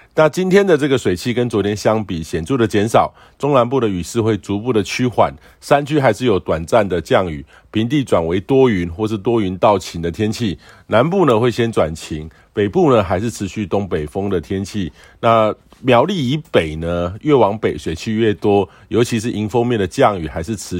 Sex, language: male, Chinese